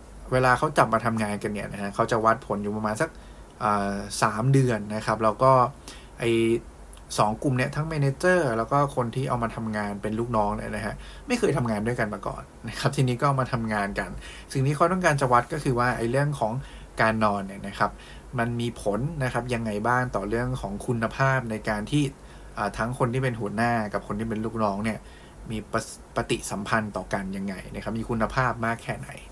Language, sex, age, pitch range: English, male, 20-39, 105-130 Hz